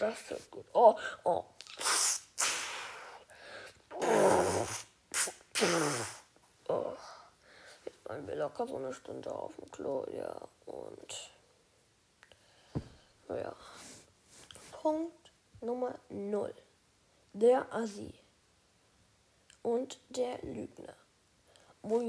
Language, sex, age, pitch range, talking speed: German, female, 10-29, 245-300 Hz, 85 wpm